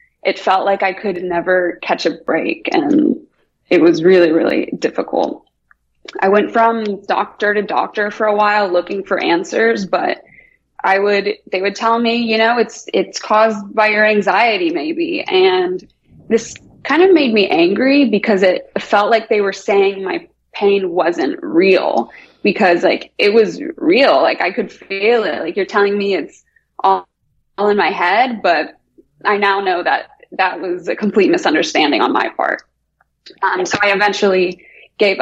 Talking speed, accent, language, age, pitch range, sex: 170 wpm, American, English, 20-39, 190-260 Hz, female